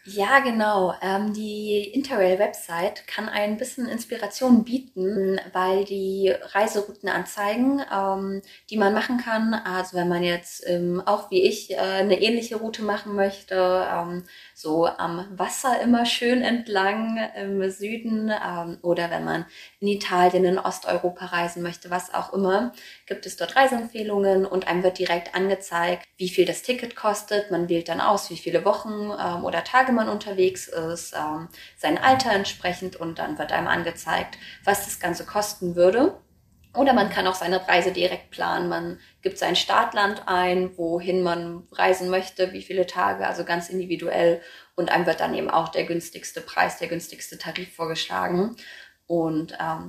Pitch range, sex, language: 175-210 Hz, female, German